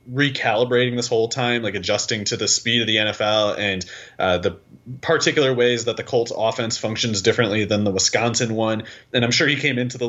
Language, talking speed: English, 200 wpm